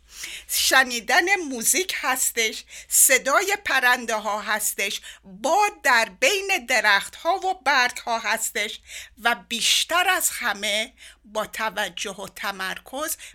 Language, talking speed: Persian, 105 wpm